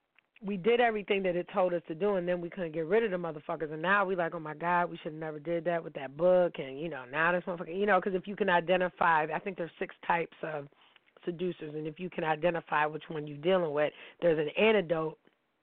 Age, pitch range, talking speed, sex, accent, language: 30-49, 160-185 Hz, 260 wpm, female, American, English